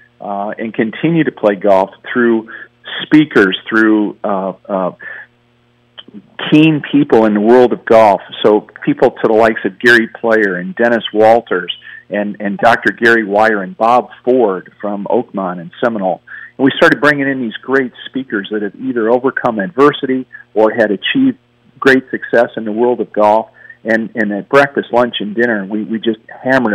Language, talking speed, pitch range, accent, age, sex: English, 170 wpm, 105-120 Hz, American, 50-69, male